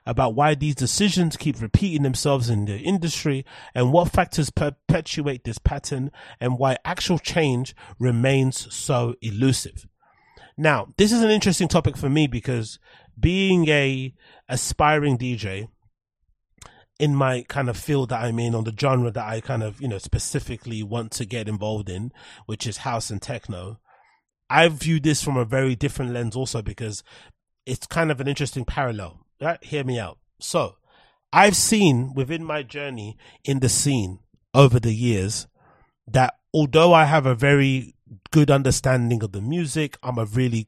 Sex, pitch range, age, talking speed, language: male, 115-150 Hz, 30-49, 160 wpm, English